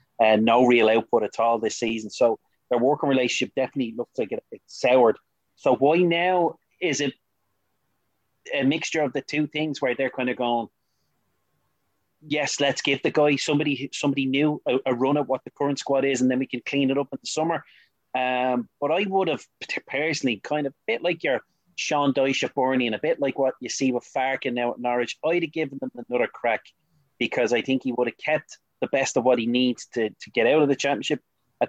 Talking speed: 210 wpm